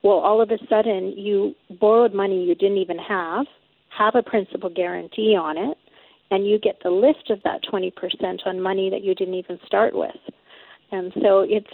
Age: 40-59